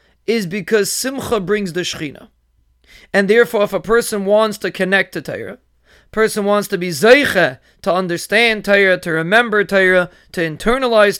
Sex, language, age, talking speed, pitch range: male, English, 30-49, 160 wpm, 175-230 Hz